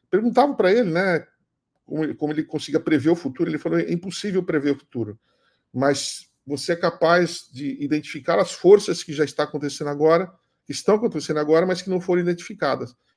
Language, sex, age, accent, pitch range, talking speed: Portuguese, male, 50-69, Brazilian, 135-165 Hz, 185 wpm